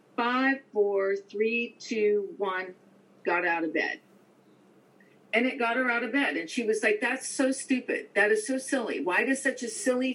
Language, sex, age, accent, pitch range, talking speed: English, female, 50-69, American, 210-265 Hz, 190 wpm